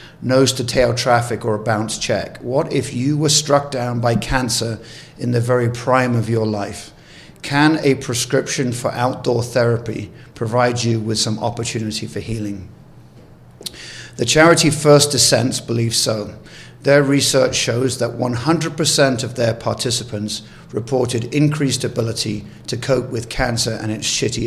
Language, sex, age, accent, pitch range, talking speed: English, male, 50-69, British, 115-135 Hz, 145 wpm